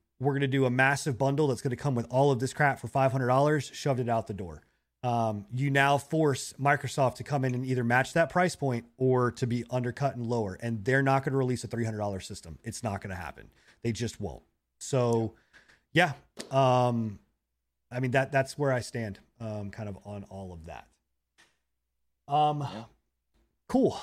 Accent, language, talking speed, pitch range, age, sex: American, English, 195 wpm, 120-155 Hz, 30-49, male